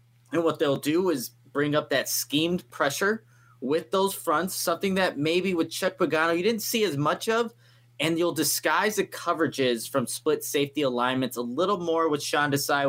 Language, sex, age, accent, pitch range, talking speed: English, male, 20-39, American, 125-170 Hz, 185 wpm